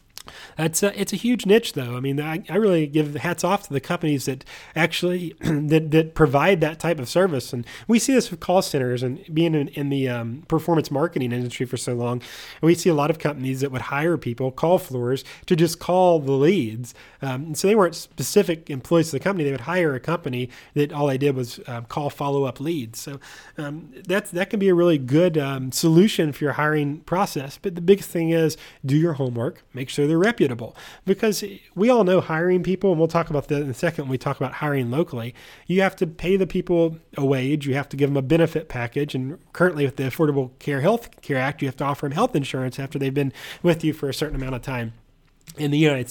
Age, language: 30-49, English